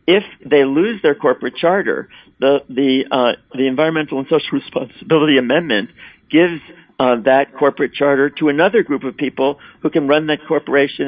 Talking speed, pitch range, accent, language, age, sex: 165 wpm, 115-145 Hz, American, English, 50-69, male